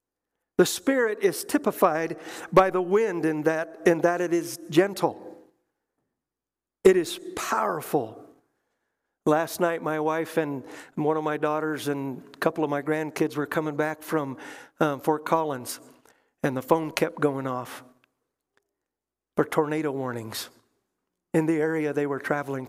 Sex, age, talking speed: male, 50-69, 145 wpm